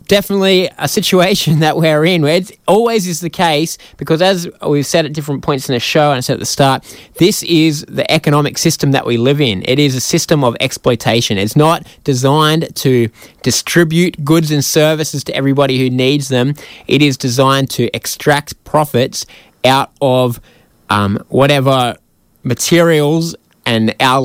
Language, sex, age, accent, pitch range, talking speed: English, male, 20-39, Australian, 125-160 Hz, 170 wpm